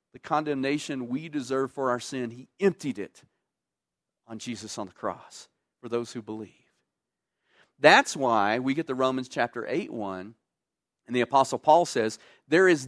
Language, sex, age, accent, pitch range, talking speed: English, male, 40-59, American, 130-205 Hz, 165 wpm